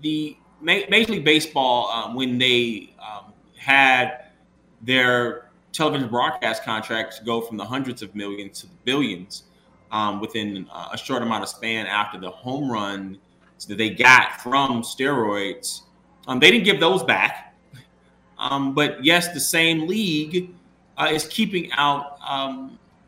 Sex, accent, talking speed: male, American, 140 wpm